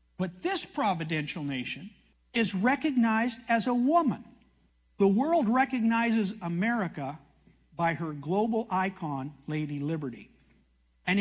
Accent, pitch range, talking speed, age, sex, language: American, 155-235 Hz, 105 wpm, 60-79, male, English